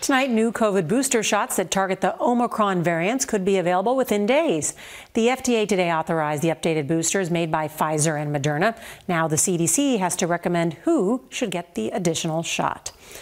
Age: 40-59